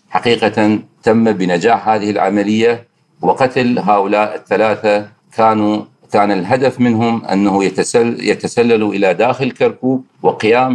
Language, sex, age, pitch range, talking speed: Arabic, male, 50-69, 105-125 Hz, 100 wpm